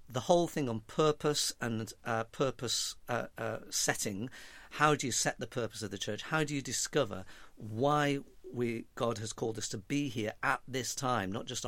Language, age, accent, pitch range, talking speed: English, 50-69, British, 110-135 Hz, 195 wpm